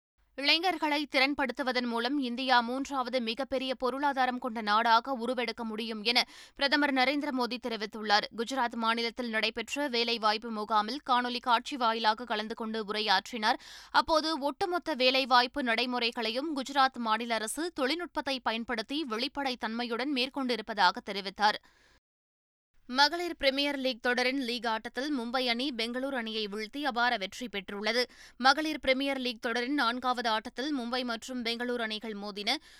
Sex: female